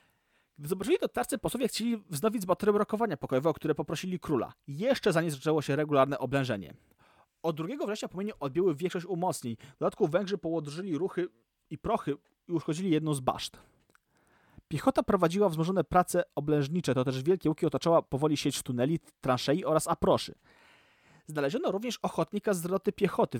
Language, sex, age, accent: Polish, male, 30-49, native